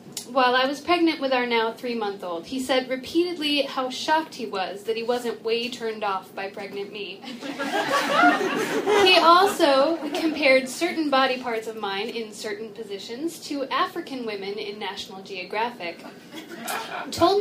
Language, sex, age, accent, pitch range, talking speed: English, female, 10-29, American, 210-295 Hz, 145 wpm